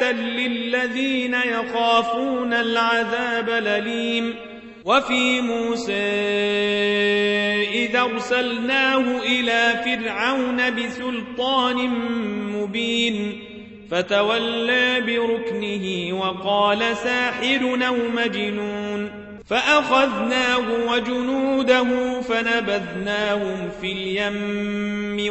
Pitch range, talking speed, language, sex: 210-250 Hz, 50 wpm, Arabic, male